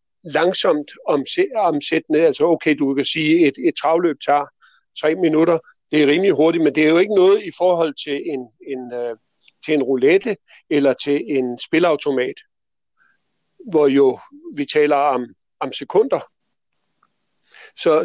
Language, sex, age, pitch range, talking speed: Danish, male, 50-69, 145-215 Hz, 155 wpm